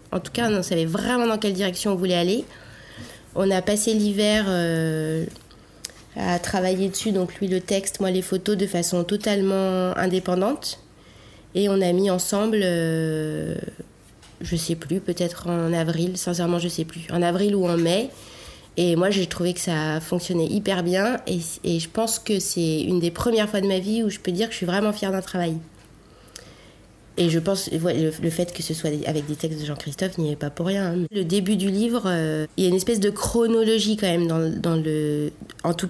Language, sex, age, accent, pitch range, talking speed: French, female, 30-49, French, 165-200 Hz, 205 wpm